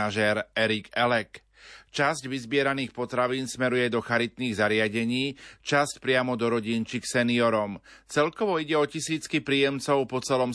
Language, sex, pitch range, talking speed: Slovak, male, 115-130 Hz, 120 wpm